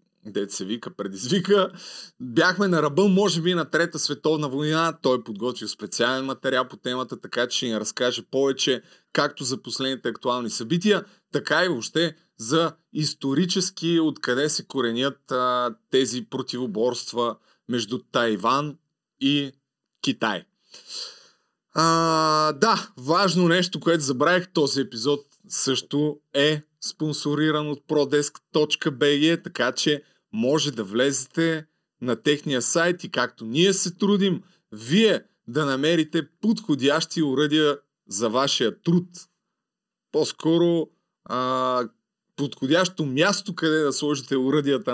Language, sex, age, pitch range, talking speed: Bulgarian, male, 30-49, 130-170 Hz, 115 wpm